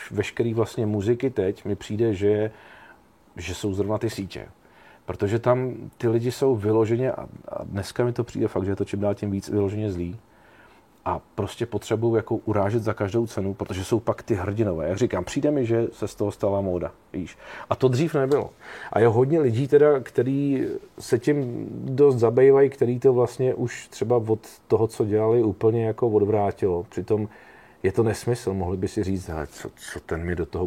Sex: male